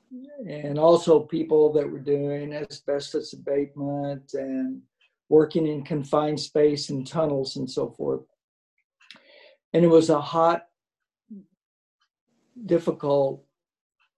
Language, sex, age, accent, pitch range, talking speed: English, male, 60-79, American, 140-160 Hz, 100 wpm